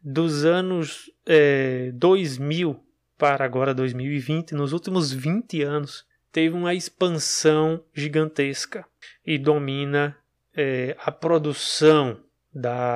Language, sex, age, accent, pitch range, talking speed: Portuguese, male, 20-39, Brazilian, 130-155 Hz, 95 wpm